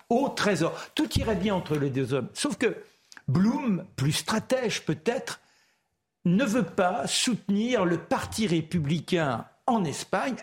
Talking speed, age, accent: 140 wpm, 60-79, French